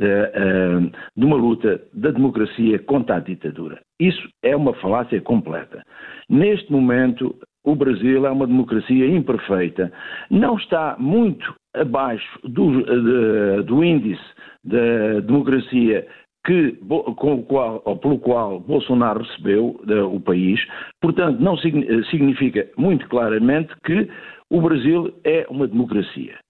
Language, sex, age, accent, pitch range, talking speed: Portuguese, male, 50-69, Portuguese, 120-160 Hz, 115 wpm